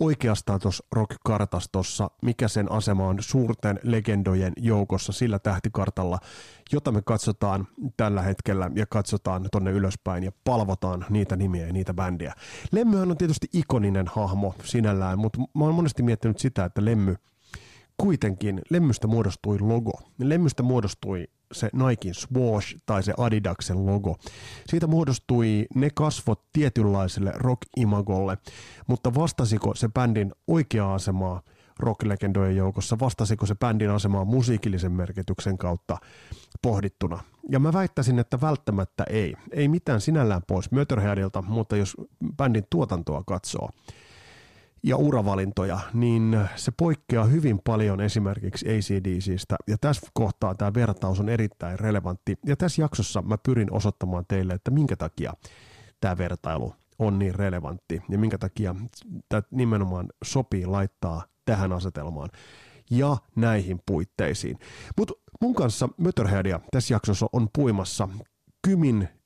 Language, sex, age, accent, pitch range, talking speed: Finnish, male, 30-49, native, 95-120 Hz, 125 wpm